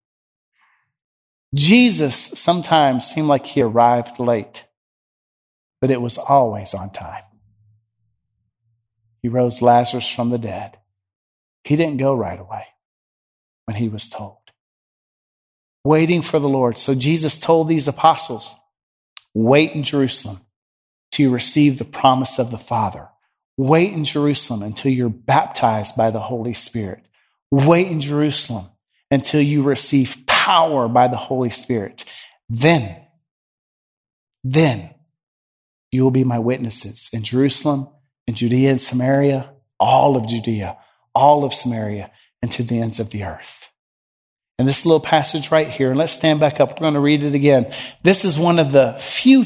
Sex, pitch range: male, 115-155 Hz